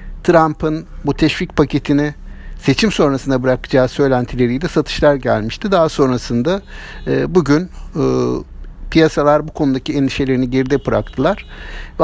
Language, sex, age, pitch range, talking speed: Turkish, male, 60-79, 125-175 Hz, 105 wpm